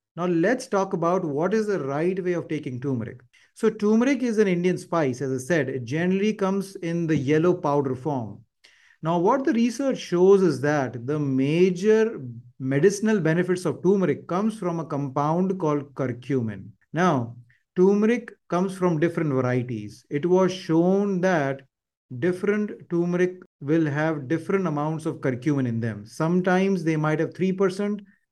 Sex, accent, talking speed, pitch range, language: male, Indian, 155 wpm, 145-190 Hz, English